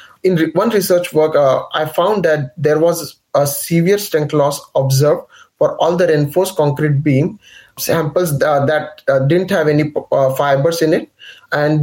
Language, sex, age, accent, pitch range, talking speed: English, male, 20-39, Indian, 140-165 Hz, 165 wpm